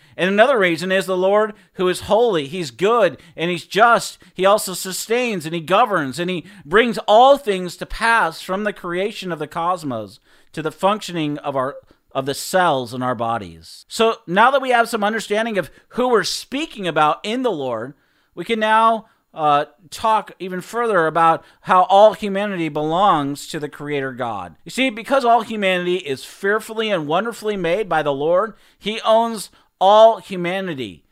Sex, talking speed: male, 180 wpm